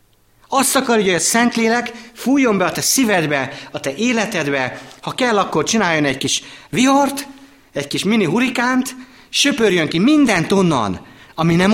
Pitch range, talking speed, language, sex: 115-185 Hz, 155 wpm, Hungarian, male